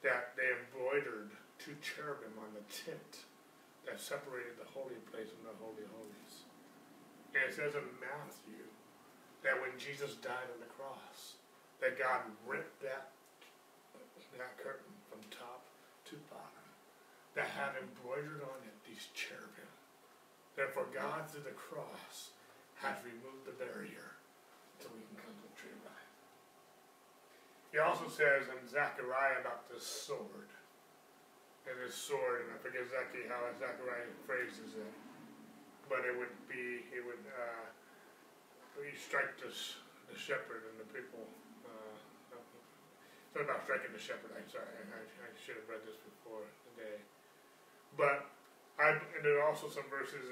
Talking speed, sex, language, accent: 140 wpm, male, English, American